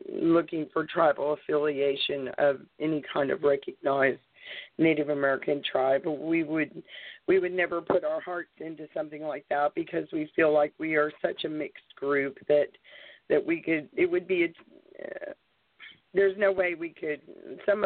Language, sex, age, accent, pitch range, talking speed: English, female, 50-69, American, 145-175 Hz, 165 wpm